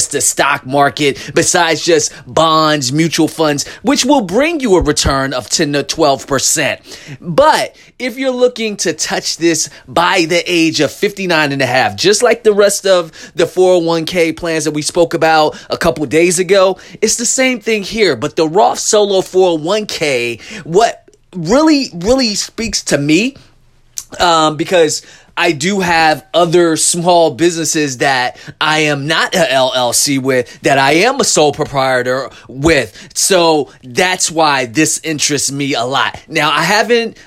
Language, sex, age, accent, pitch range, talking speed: English, male, 30-49, American, 150-195 Hz, 160 wpm